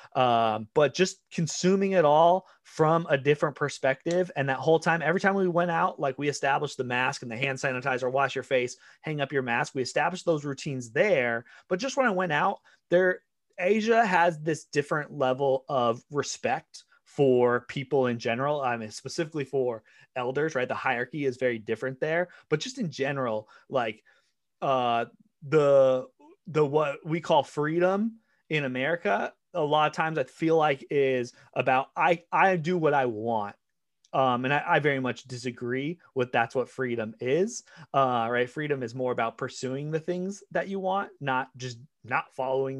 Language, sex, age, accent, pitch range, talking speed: English, male, 30-49, American, 130-175 Hz, 180 wpm